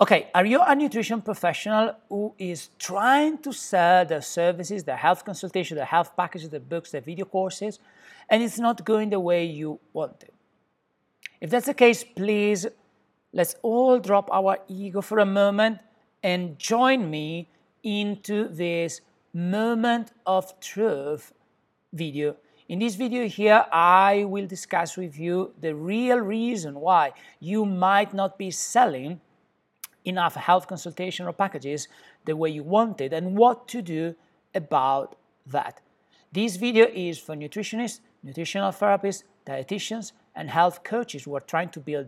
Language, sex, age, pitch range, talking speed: English, male, 50-69, 165-215 Hz, 150 wpm